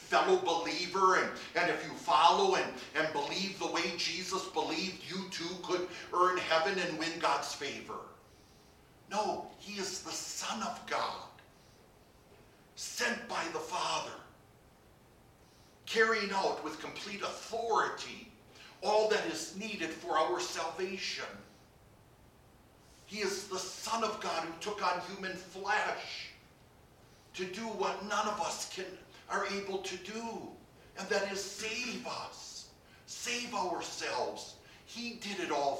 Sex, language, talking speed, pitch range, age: male, English, 130 wpm, 165-205 Hz, 50-69